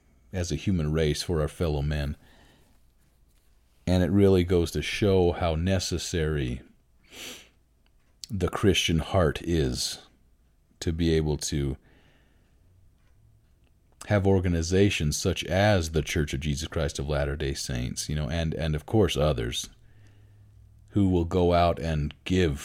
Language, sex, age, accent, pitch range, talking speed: English, male, 40-59, American, 75-90 Hz, 130 wpm